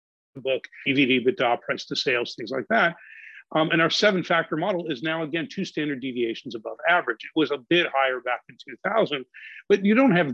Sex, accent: male, American